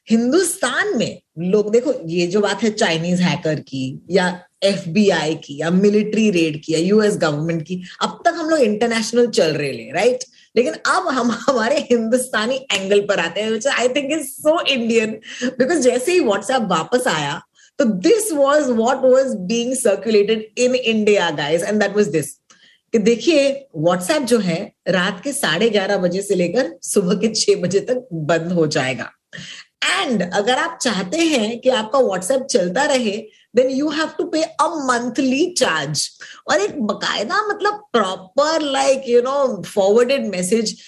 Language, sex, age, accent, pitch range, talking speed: Hindi, female, 30-49, native, 195-260 Hz, 135 wpm